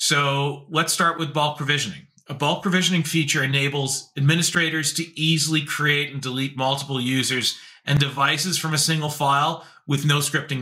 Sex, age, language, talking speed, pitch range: male, 40-59, English, 160 wpm, 140-170 Hz